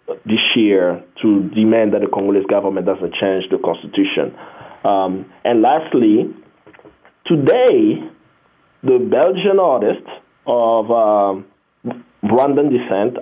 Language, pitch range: English, 105-140 Hz